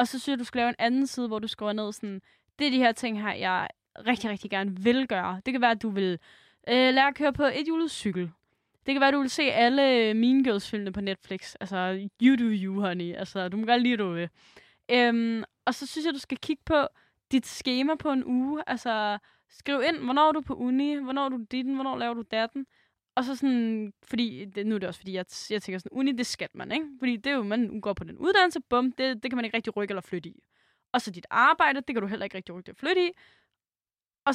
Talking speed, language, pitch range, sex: 260 wpm, Danish, 210-270 Hz, female